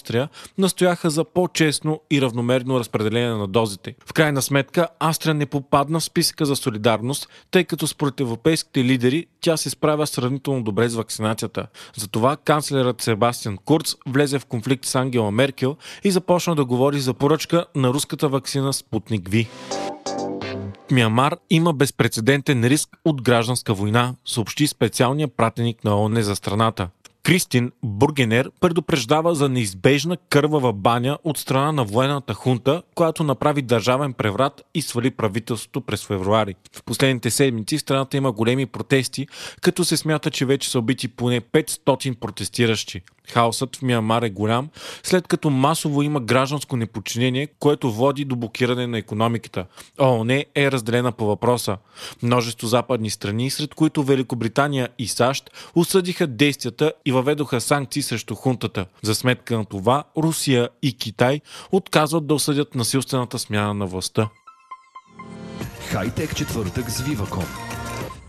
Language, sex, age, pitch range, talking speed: Bulgarian, male, 30-49, 120-150 Hz, 140 wpm